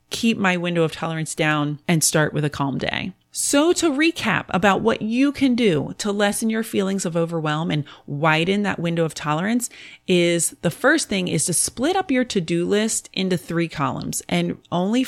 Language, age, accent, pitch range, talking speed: English, 30-49, American, 155-200 Hz, 190 wpm